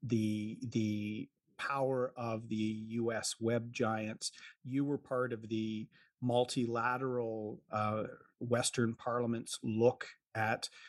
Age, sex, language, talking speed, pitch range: 40-59, male, English, 105 wpm, 115-135 Hz